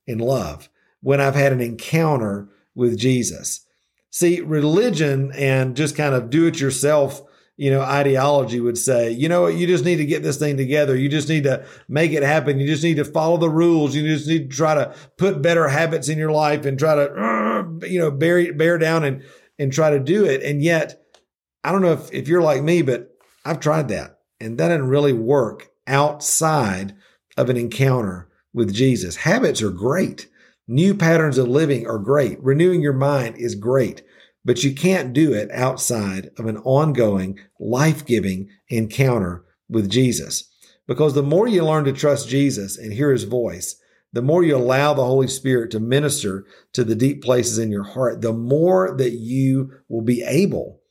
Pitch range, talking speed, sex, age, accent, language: 120-155 Hz, 190 wpm, male, 50-69, American, English